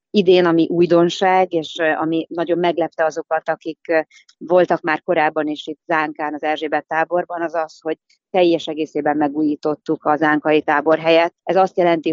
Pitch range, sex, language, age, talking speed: 150-165 Hz, female, Hungarian, 30-49, 155 wpm